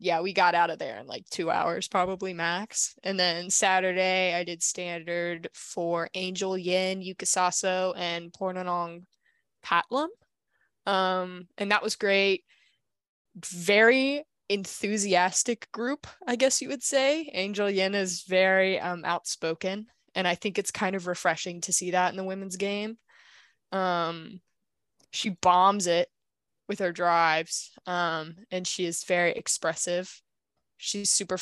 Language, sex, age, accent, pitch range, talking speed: English, female, 20-39, American, 175-195 Hz, 140 wpm